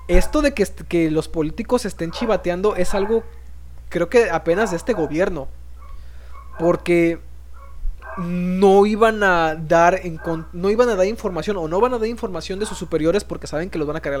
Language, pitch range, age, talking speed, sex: Spanish, 150-190 Hz, 20-39, 190 wpm, male